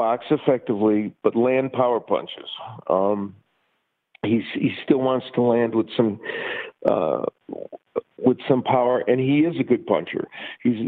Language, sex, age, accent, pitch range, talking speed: English, male, 50-69, American, 110-135 Hz, 145 wpm